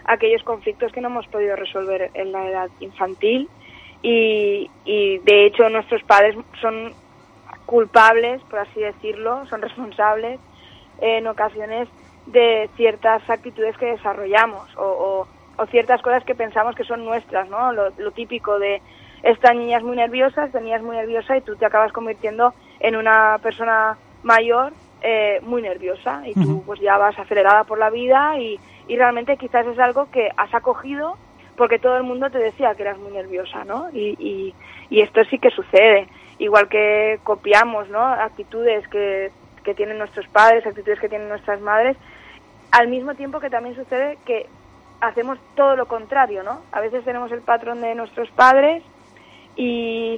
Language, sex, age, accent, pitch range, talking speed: Spanish, female, 20-39, Spanish, 210-245 Hz, 165 wpm